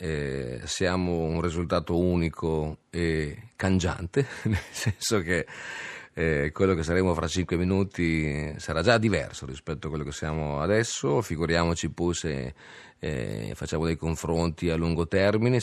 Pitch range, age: 75-100 Hz, 40-59